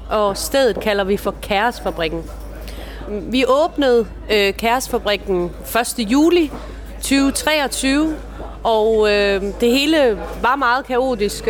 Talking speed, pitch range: 105 wpm, 195-250 Hz